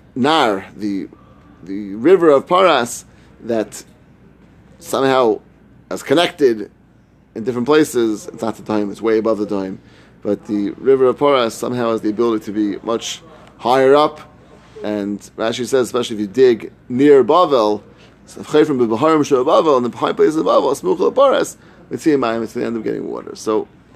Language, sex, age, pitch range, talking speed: English, male, 30-49, 110-155 Hz, 165 wpm